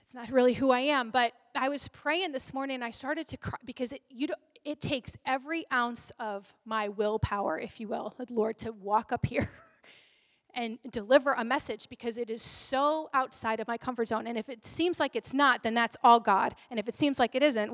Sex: female